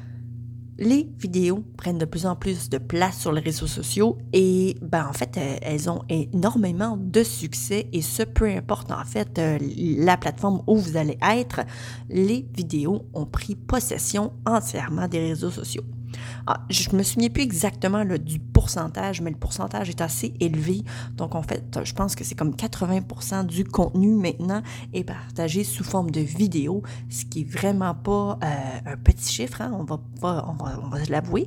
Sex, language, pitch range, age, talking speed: female, French, 120-175 Hz, 30-49, 180 wpm